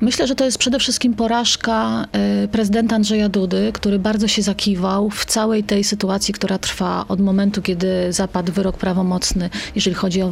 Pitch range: 195-240 Hz